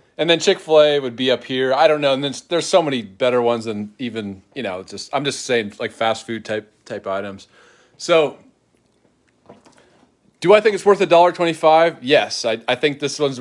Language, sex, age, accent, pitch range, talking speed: English, male, 30-49, American, 120-150 Hz, 205 wpm